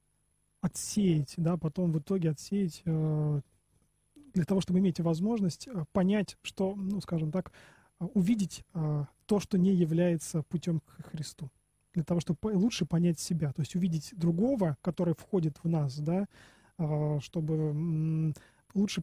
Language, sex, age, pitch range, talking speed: Russian, male, 20-39, 160-190 Hz, 140 wpm